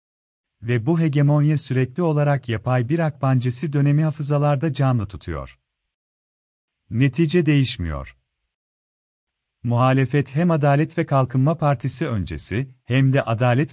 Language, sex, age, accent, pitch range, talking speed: Turkish, male, 40-59, native, 120-150 Hz, 105 wpm